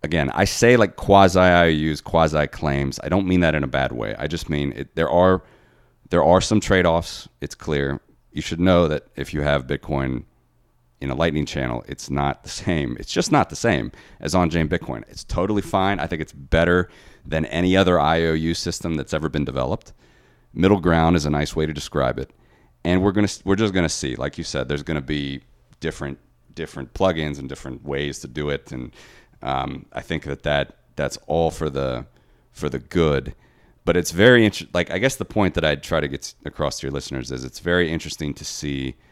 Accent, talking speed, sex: American, 215 wpm, male